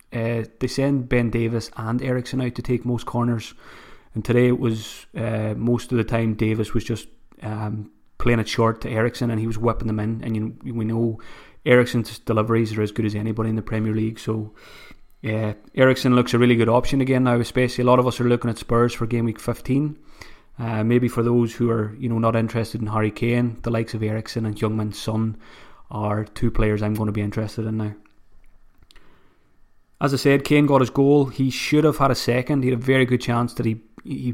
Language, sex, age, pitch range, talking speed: English, male, 20-39, 110-125 Hz, 220 wpm